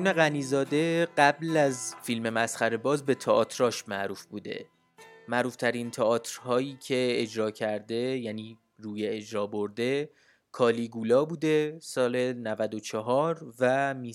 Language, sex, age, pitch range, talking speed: Persian, male, 20-39, 115-150 Hz, 120 wpm